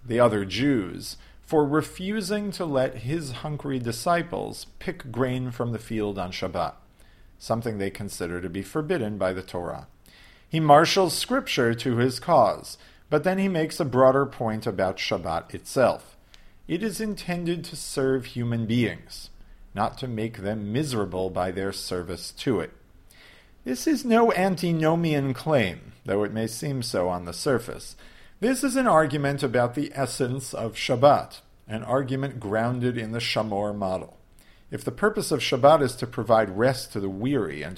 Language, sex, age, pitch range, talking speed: English, male, 50-69, 110-155 Hz, 160 wpm